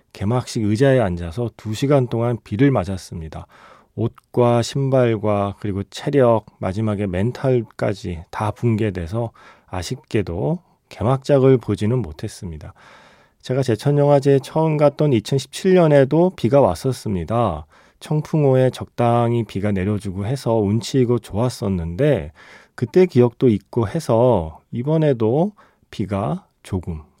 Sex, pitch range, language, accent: male, 100-140 Hz, Korean, native